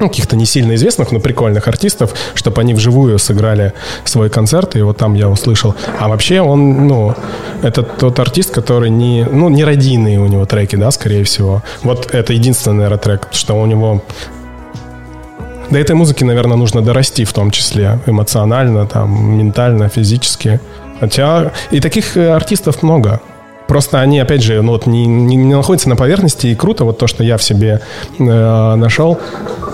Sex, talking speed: male, 170 wpm